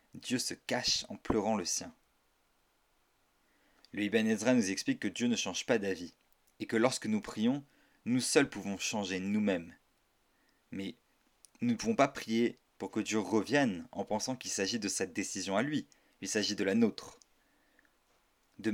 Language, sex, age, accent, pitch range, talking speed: French, male, 30-49, French, 105-155 Hz, 170 wpm